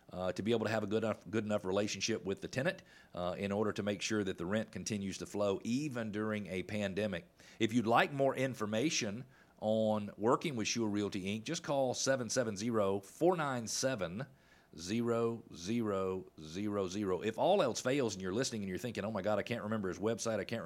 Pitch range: 100-130 Hz